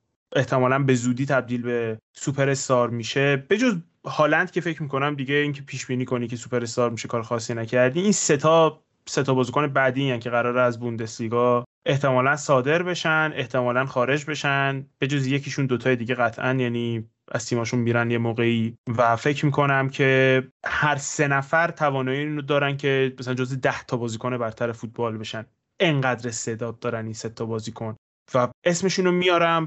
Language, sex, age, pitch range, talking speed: Persian, male, 20-39, 120-140 Hz, 170 wpm